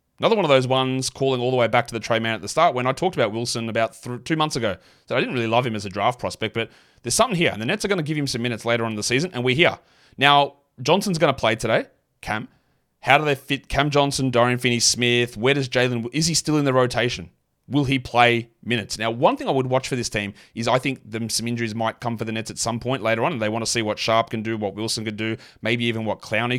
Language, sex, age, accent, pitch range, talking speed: English, male, 30-49, Australian, 110-140 Hz, 285 wpm